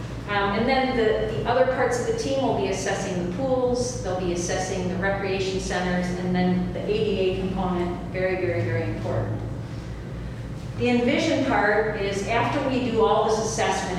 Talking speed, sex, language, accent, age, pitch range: 170 wpm, female, English, American, 40-59, 175-215 Hz